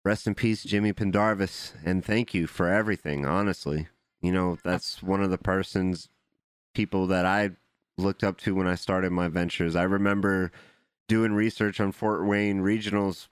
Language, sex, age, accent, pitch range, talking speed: English, male, 30-49, American, 80-100 Hz, 165 wpm